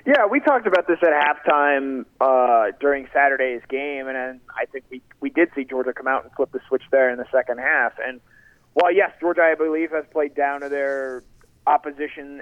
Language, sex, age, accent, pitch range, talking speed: English, male, 30-49, American, 135-165 Hz, 205 wpm